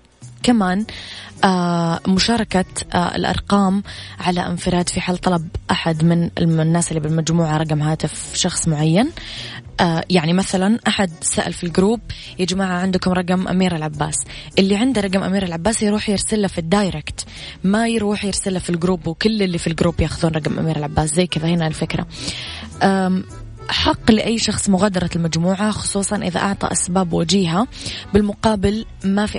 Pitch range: 160-195 Hz